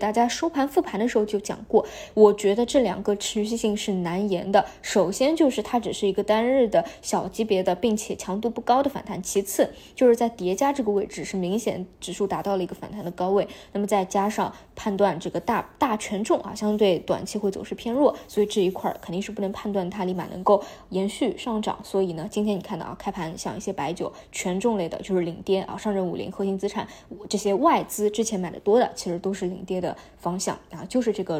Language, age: Chinese, 20-39